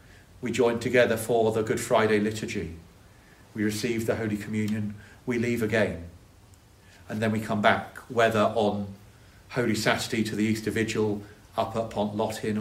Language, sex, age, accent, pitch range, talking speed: English, male, 40-59, British, 95-110 Hz, 155 wpm